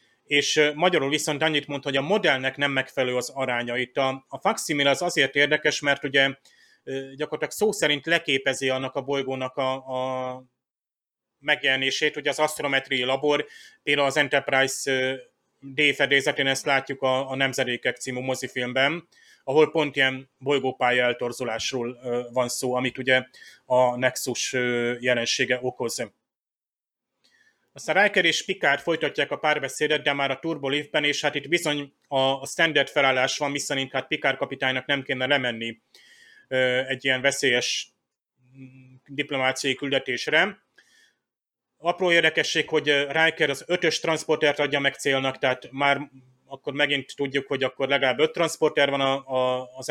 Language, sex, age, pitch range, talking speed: Hungarian, male, 30-49, 130-150 Hz, 135 wpm